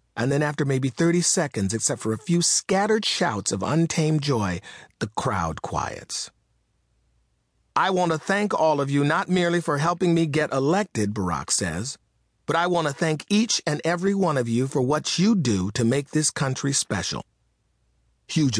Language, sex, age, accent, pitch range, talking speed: English, male, 40-59, American, 95-160 Hz, 175 wpm